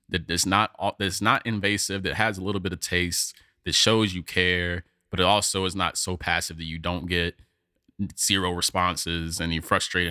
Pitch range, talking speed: 85-105 Hz, 195 wpm